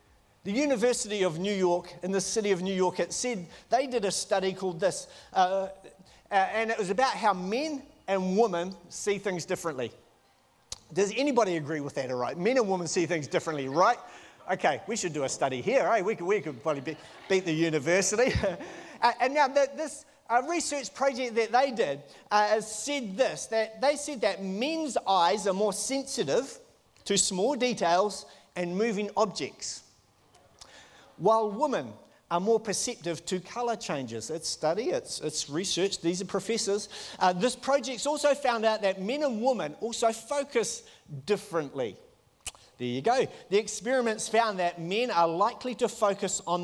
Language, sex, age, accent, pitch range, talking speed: English, male, 40-59, Australian, 170-235 Hz, 175 wpm